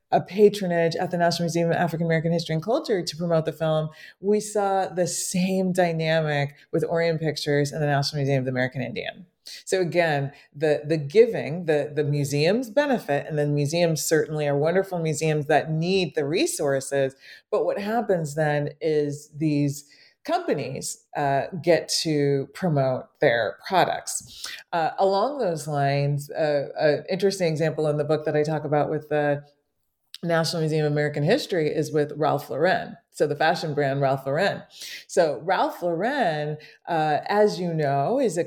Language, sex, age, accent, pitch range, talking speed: English, female, 30-49, American, 145-175 Hz, 165 wpm